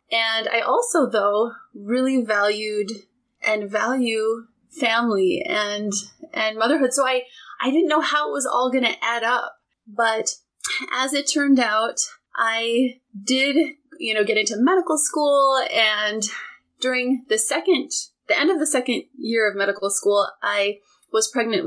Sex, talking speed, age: female, 150 wpm, 30-49